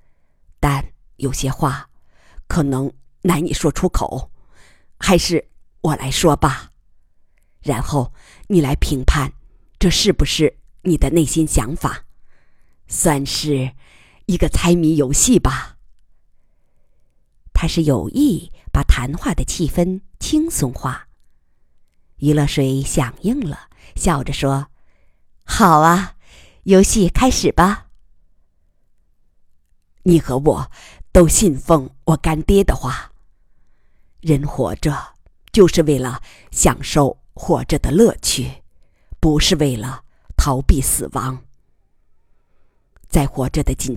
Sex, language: female, Chinese